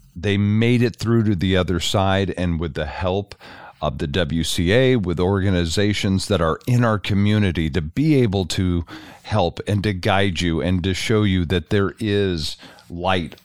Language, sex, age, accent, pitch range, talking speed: English, male, 50-69, American, 85-105 Hz, 175 wpm